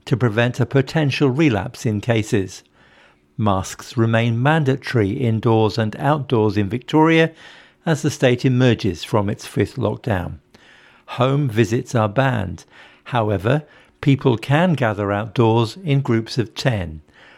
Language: English